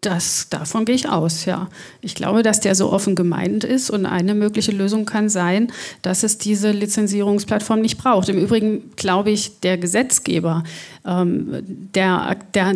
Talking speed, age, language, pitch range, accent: 160 wpm, 40-59, German, 180-205 Hz, German